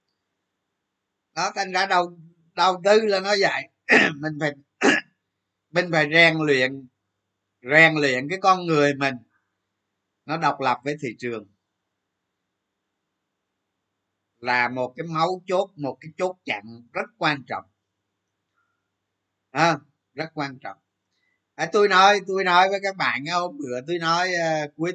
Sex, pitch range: male, 130-190 Hz